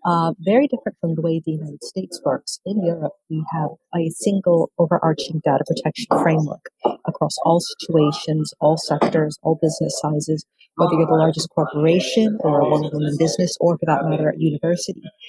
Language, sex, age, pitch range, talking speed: English, female, 40-59, 160-190 Hz, 175 wpm